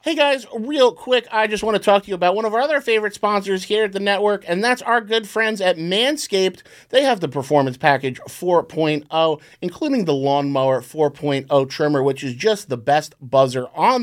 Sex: male